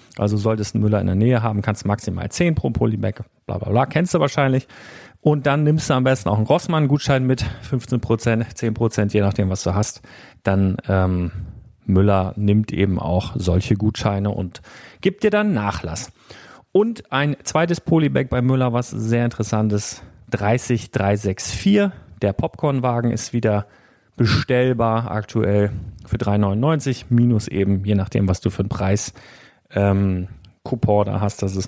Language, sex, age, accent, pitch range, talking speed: German, male, 40-59, German, 100-130 Hz, 160 wpm